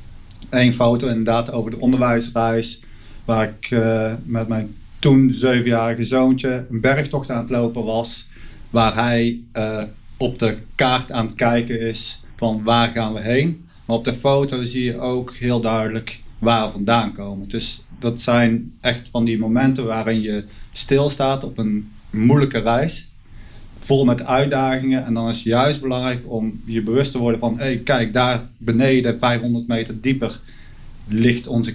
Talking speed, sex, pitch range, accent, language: 160 wpm, male, 115-125 Hz, Dutch, Dutch